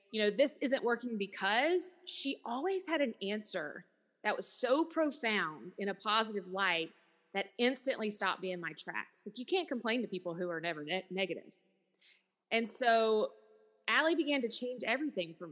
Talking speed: 165 wpm